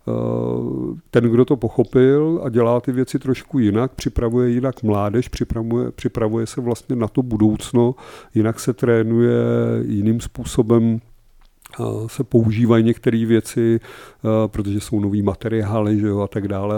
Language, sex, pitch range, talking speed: Czech, male, 105-120 Hz, 135 wpm